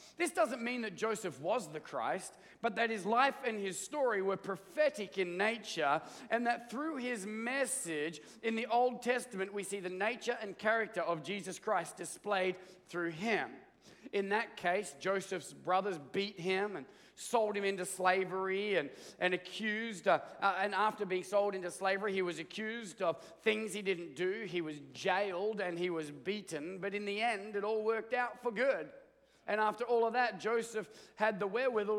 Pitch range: 185-230 Hz